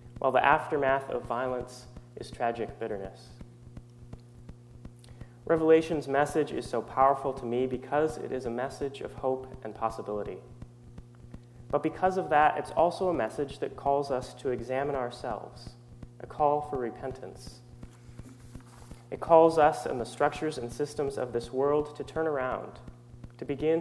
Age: 30-49